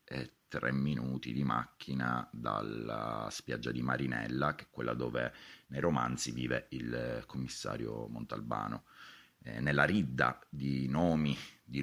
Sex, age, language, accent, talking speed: male, 30-49, Italian, native, 120 wpm